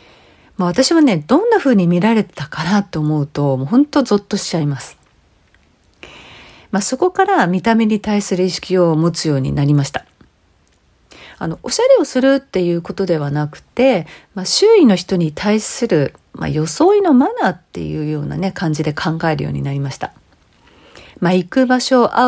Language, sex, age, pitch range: Japanese, female, 40-59, 150-245 Hz